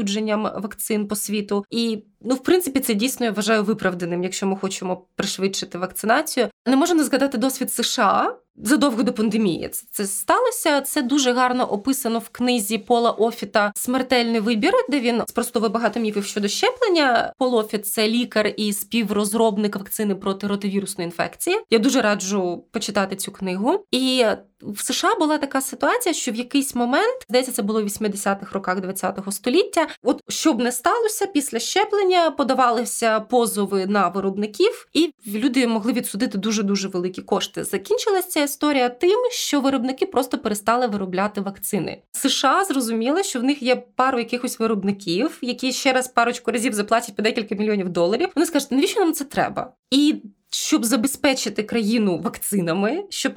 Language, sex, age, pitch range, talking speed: Ukrainian, female, 20-39, 210-270 Hz, 155 wpm